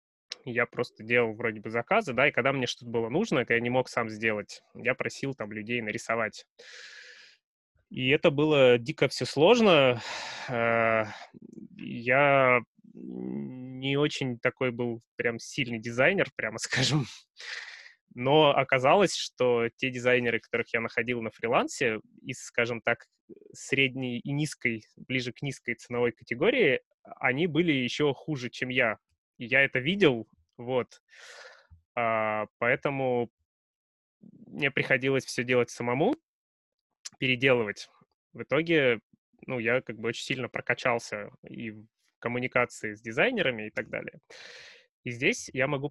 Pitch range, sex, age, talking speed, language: 115-135 Hz, male, 20-39, 130 wpm, Russian